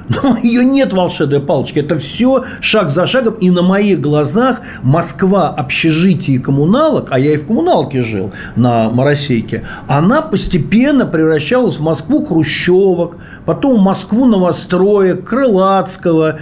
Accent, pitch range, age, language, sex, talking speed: native, 155-215 Hz, 40-59, Russian, male, 130 wpm